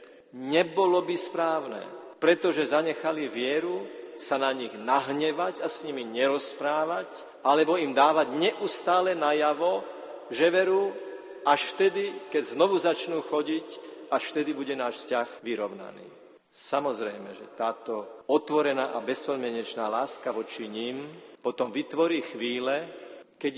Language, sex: Slovak, male